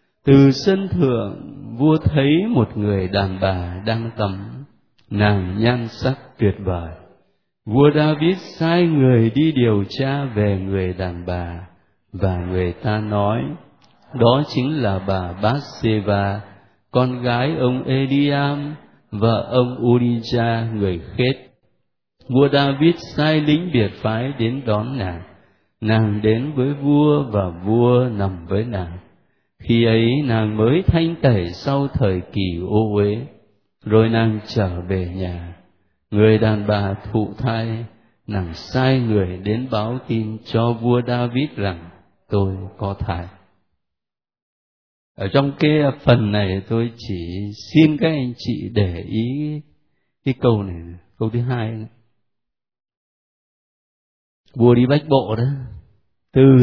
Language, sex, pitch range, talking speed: Vietnamese, male, 100-130 Hz, 130 wpm